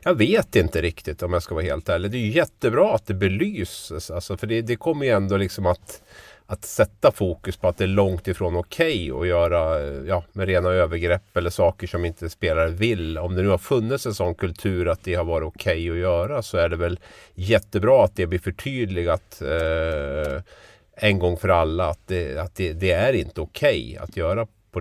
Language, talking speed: Swedish, 220 wpm